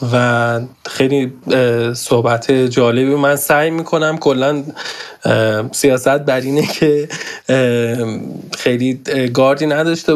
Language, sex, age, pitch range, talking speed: Persian, male, 20-39, 125-150 Hz, 90 wpm